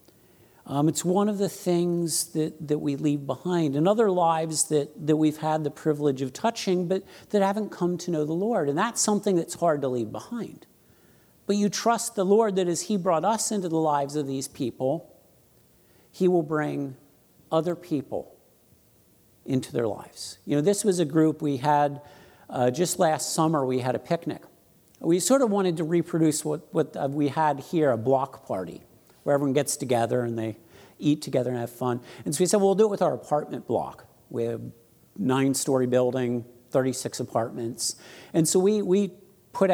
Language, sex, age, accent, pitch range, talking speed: English, male, 50-69, American, 140-180 Hz, 190 wpm